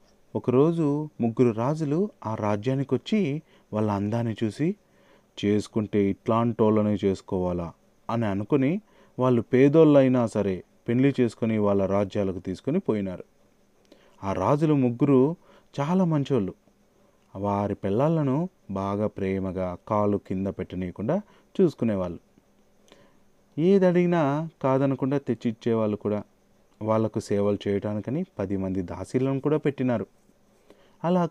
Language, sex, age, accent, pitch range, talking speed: Telugu, male, 30-49, native, 105-155 Hz, 100 wpm